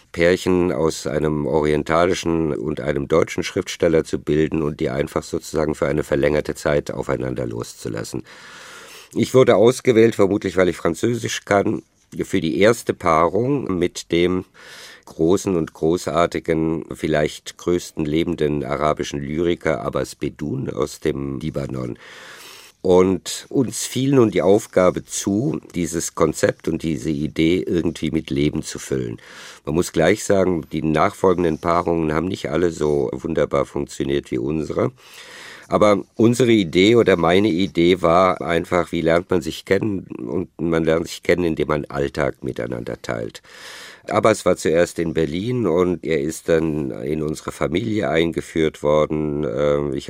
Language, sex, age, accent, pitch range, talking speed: German, male, 50-69, German, 75-85 Hz, 140 wpm